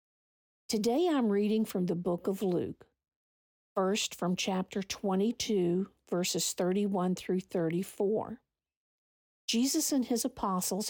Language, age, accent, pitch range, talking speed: English, 50-69, American, 180-220 Hz, 110 wpm